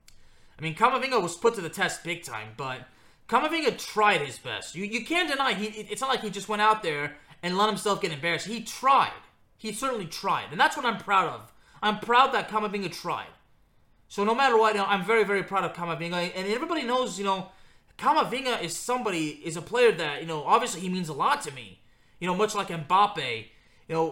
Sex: male